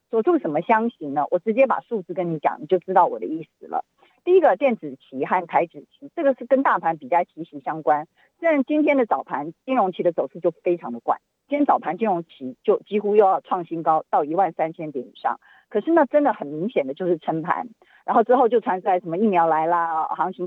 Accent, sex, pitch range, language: native, female, 165-270 Hz, Chinese